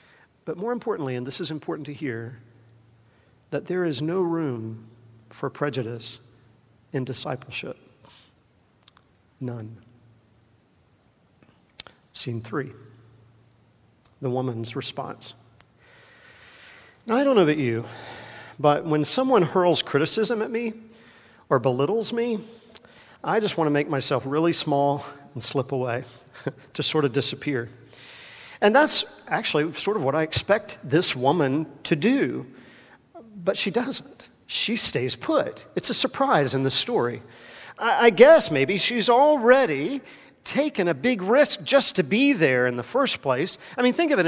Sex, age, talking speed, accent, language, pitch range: male, 50-69, 135 wpm, American, English, 135-225 Hz